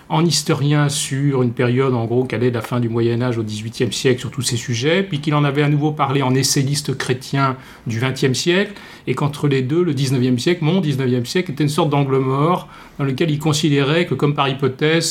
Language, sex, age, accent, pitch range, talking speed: English, male, 30-49, French, 120-150 Hz, 220 wpm